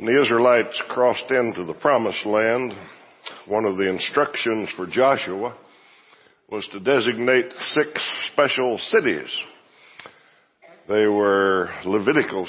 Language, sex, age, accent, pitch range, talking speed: English, male, 60-79, American, 100-130 Hz, 110 wpm